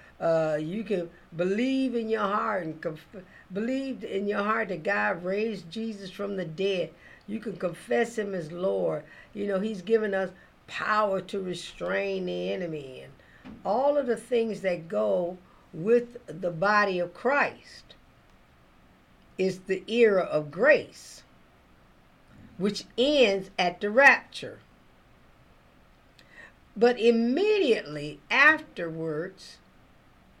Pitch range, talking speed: 175-240 Hz, 120 wpm